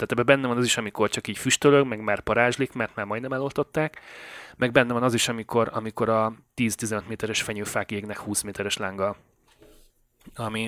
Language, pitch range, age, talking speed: Hungarian, 105-120 Hz, 30-49, 185 wpm